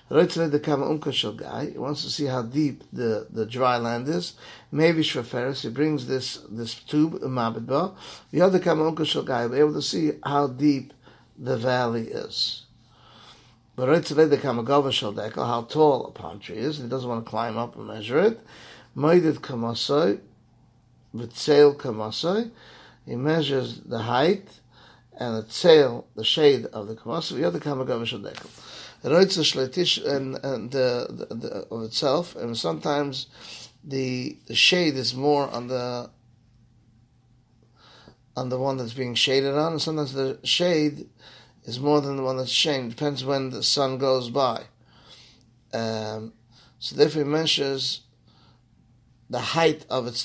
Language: English